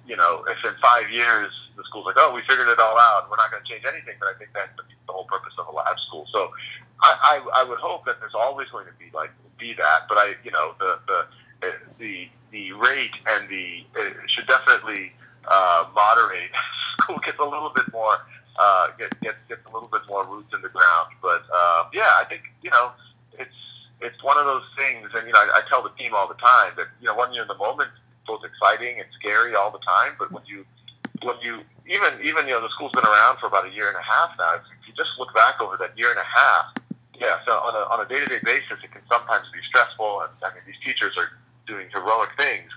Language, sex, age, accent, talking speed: English, male, 40-59, American, 245 wpm